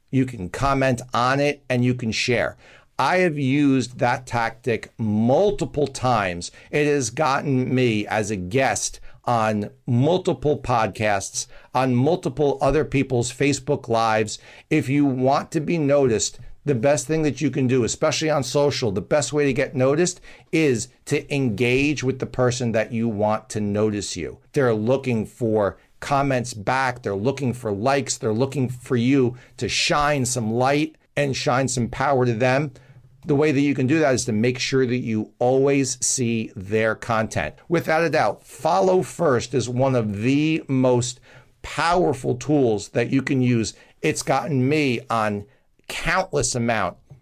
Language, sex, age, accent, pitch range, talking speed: English, male, 50-69, American, 120-145 Hz, 165 wpm